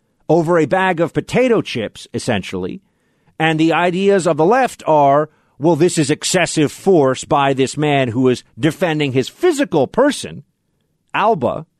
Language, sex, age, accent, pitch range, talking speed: English, male, 50-69, American, 105-155 Hz, 145 wpm